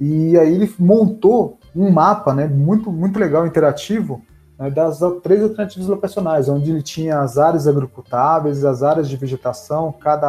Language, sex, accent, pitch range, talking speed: Portuguese, male, Brazilian, 135-175 Hz, 155 wpm